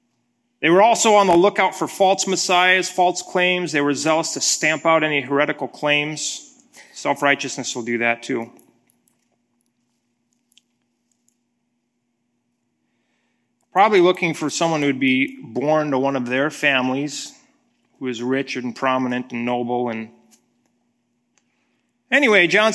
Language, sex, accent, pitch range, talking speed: English, male, American, 125-195 Hz, 125 wpm